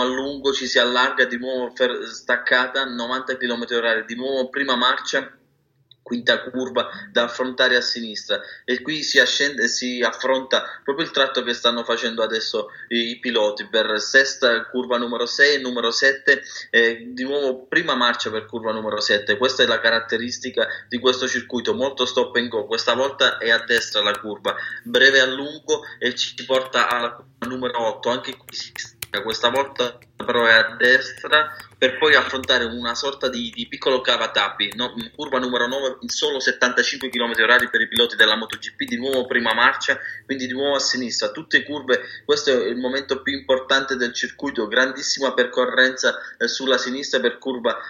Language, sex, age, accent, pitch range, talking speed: Italian, male, 20-39, native, 120-135 Hz, 175 wpm